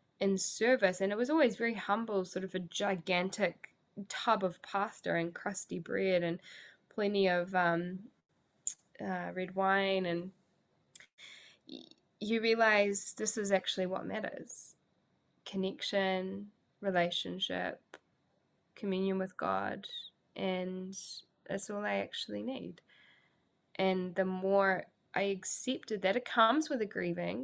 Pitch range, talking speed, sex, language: 180-200 Hz, 120 wpm, female, English